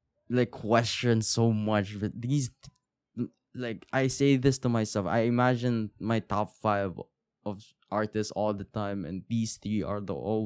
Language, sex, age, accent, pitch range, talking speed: Filipino, male, 10-29, native, 95-120 Hz, 155 wpm